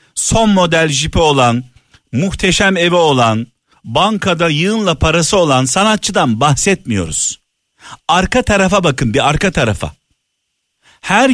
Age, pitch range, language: 50-69, 120-175 Hz, Turkish